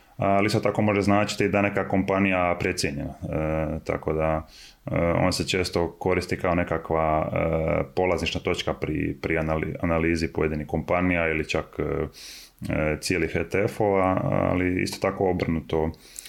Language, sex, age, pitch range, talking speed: Croatian, male, 20-39, 80-90 Hz, 135 wpm